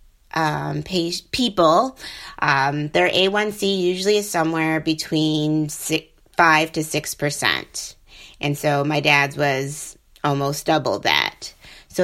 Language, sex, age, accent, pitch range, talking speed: English, female, 30-49, American, 150-190 Hz, 120 wpm